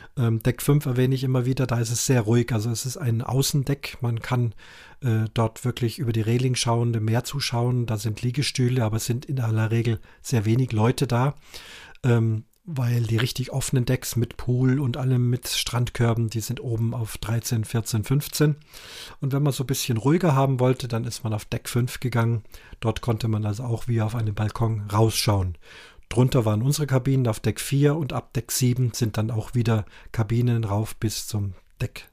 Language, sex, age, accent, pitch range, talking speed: German, male, 40-59, German, 115-135 Hz, 200 wpm